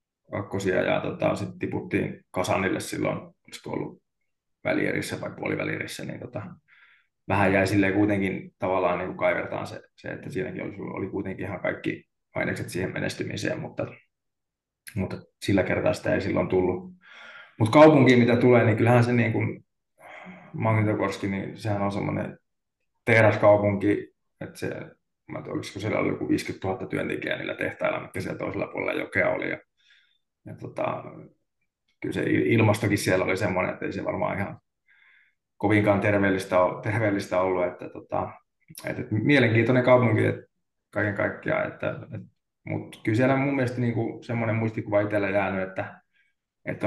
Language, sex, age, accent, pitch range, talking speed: Finnish, male, 20-39, native, 100-115 Hz, 140 wpm